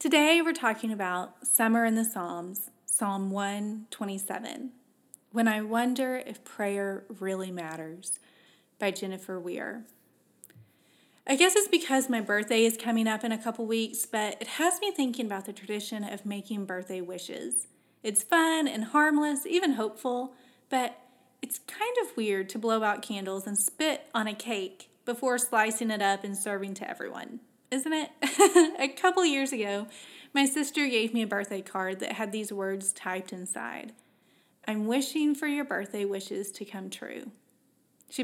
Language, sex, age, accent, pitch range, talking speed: English, female, 20-39, American, 205-265 Hz, 160 wpm